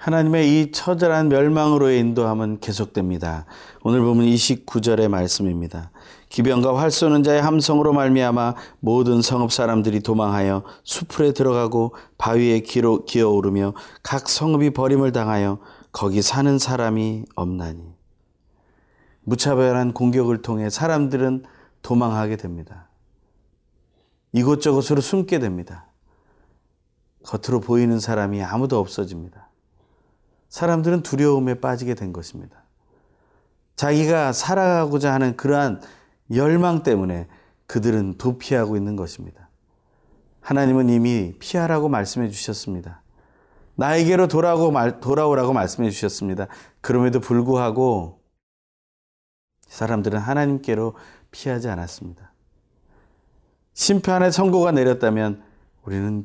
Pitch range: 105-140 Hz